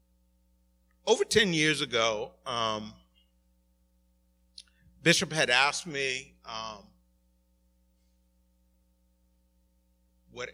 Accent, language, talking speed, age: American, English, 65 wpm, 50-69